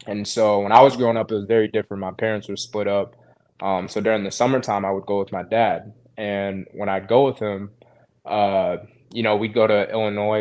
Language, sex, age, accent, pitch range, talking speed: English, male, 20-39, American, 100-115 Hz, 230 wpm